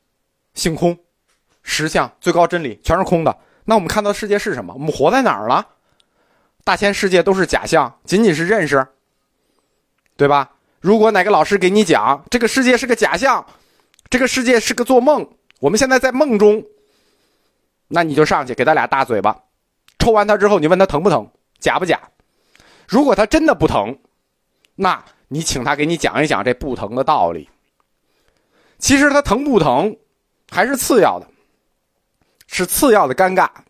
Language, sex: Chinese, male